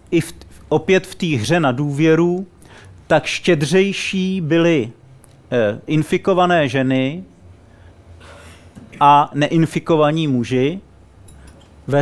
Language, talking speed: Czech, 80 wpm